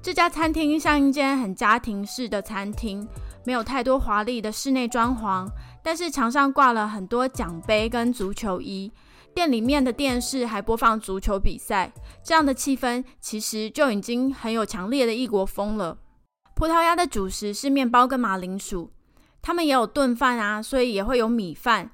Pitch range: 205-270 Hz